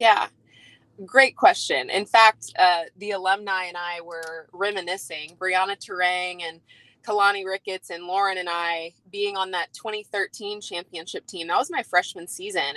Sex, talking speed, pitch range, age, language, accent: female, 150 wpm, 180-220 Hz, 20-39, English, American